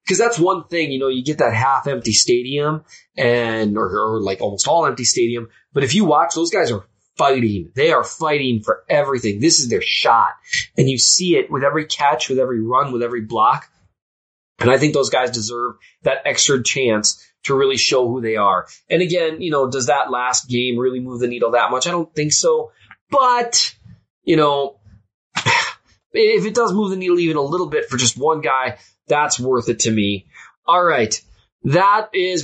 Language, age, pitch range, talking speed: English, 20-39, 120-165 Hz, 200 wpm